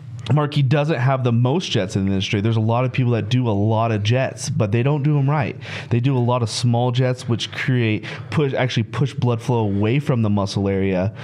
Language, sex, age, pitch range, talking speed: English, male, 20-39, 110-130 Hz, 240 wpm